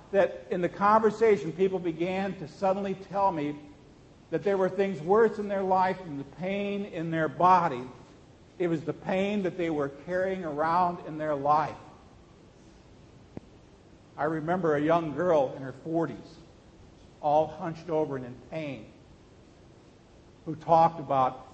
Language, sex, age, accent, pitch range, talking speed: English, male, 50-69, American, 150-195 Hz, 150 wpm